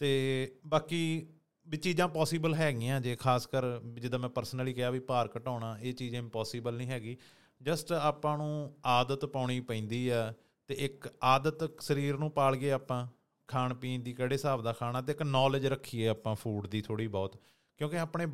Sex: male